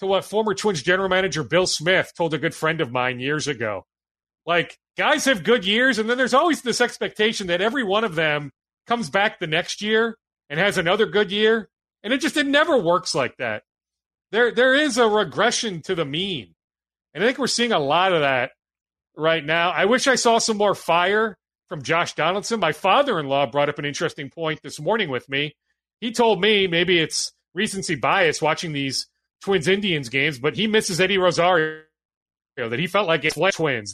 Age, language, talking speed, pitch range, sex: 40-59, English, 205 wpm, 155-210 Hz, male